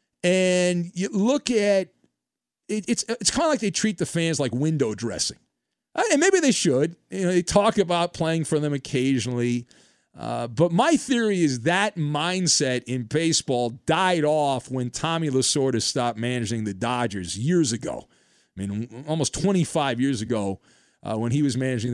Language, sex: English, male